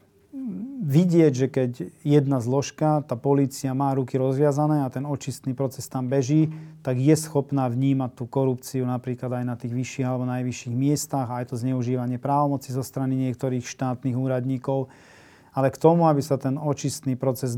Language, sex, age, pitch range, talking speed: Slovak, male, 40-59, 130-145 Hz, 160 wpm